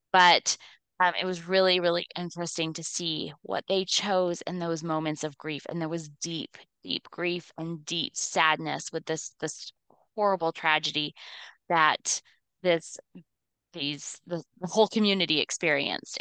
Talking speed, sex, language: 145 wpm, female, English